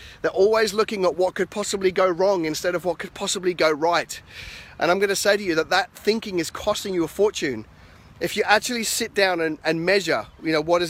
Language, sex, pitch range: English, male, 160-195 Hz